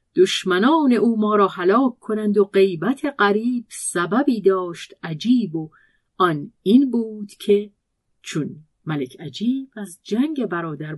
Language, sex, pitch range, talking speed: Persian, female, 160-230 Hz, 125 wpm